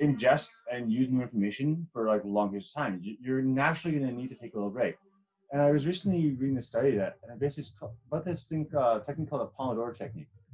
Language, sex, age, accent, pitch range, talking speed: English, male, 30-49, American, 115-150 Hz, 230 wpm